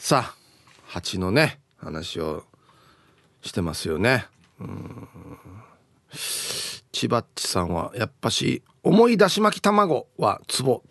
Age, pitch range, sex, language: 40-59, 130-195 Hz, male, Japanese